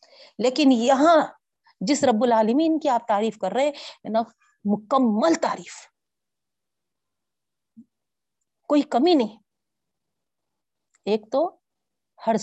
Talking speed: 90 wpm